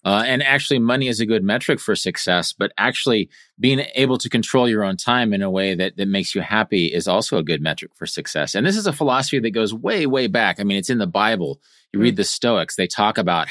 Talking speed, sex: 260 wpm, male